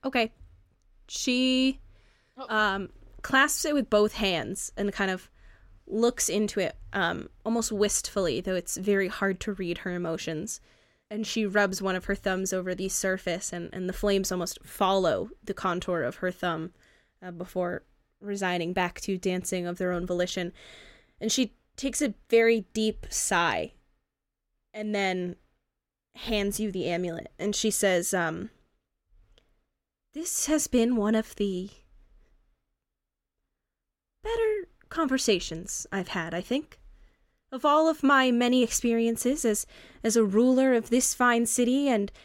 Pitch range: 185-240 Hz